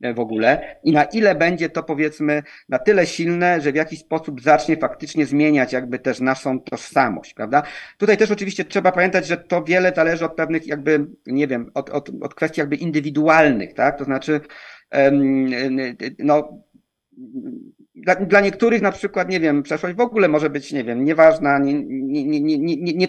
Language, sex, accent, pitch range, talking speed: Polish, male, native, 145-175 Hz, 175 wpm